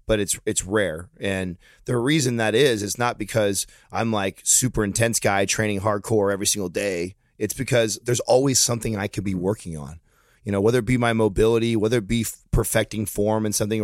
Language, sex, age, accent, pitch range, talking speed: English, male, 30-49, American, 100-120 Hz, 200 wpm